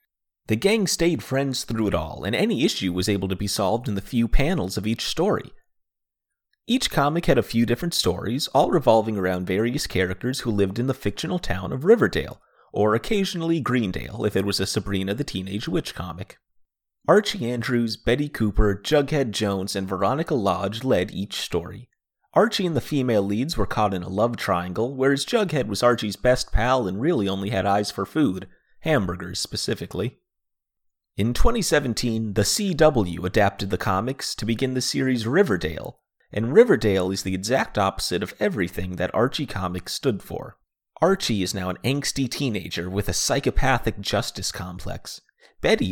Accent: American